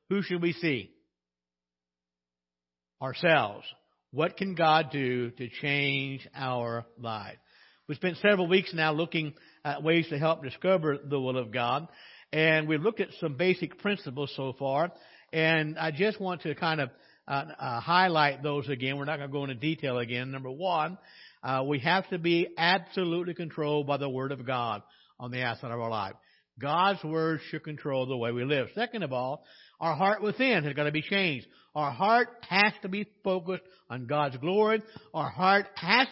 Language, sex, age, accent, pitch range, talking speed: English, male, 60-79, American, 140-185 Hz, 180 wpm